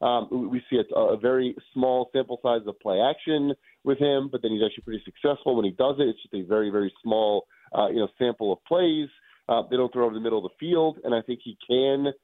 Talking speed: 250 wpm